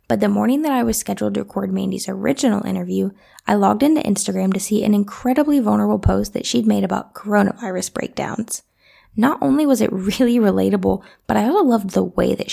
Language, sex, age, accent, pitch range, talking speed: English, female, 10-29, American, 190-240 Hz, 195 wpm